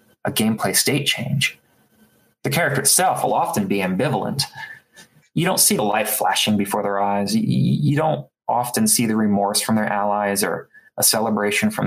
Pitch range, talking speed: 105-125 Hz, 165 wpm